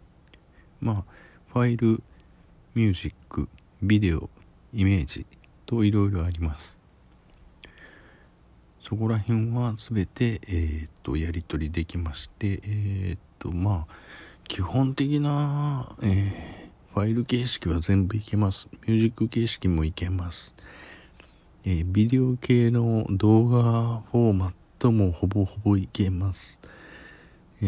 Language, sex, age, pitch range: Japanese, male, 50-69, 85-115 Hz